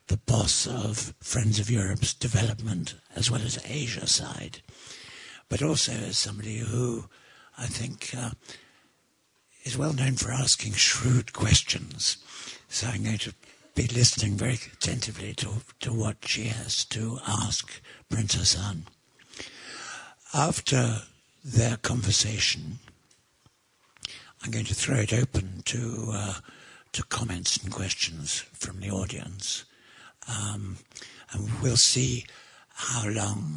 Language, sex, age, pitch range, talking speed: English, male, 60-79, 105-125 Hz, 120 wpm